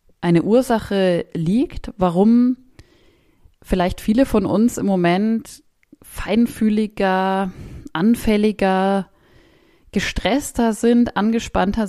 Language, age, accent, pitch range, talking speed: German, 20-39, German, 165-220 Hz, 75 wpm